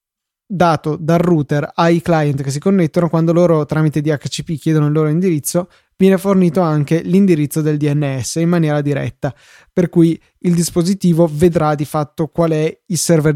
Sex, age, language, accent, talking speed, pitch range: male, 20-39, Italian, native, 160 wpm, 150-175 Hz